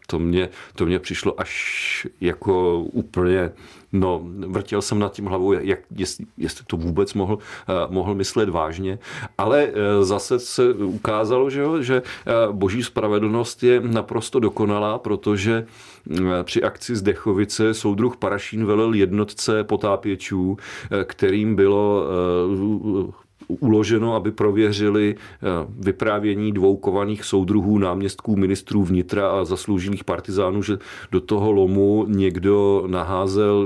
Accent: native